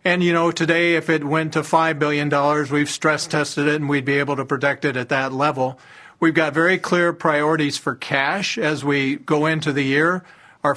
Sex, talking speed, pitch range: male, 215 wpm, 145-165 Hz